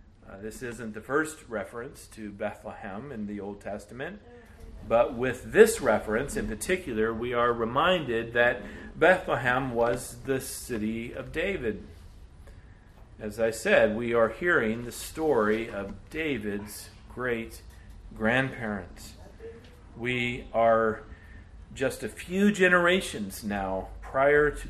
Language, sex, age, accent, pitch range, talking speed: English, male, 40-59, American, 105-135 Hz, 120 wpm